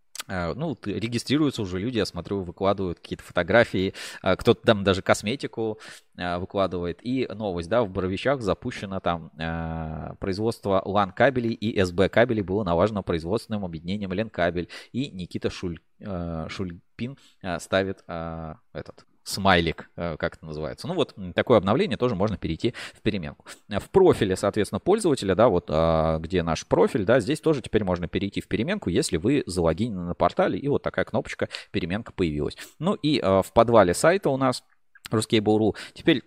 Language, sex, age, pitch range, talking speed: Russian, male, 20-39, 85-110 Hz, 145 wpm